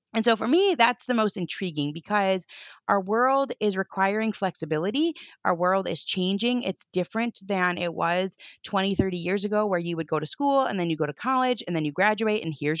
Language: English